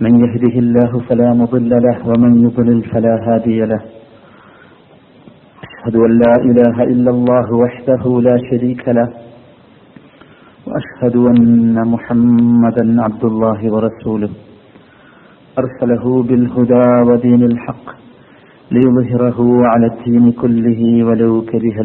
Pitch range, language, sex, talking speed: 115-125 Hz, Malayalam, male, 100 wpm